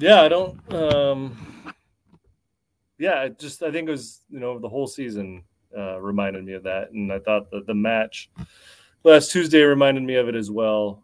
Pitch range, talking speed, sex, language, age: 100-115 Hz, 190 wpm, male, English, 30-49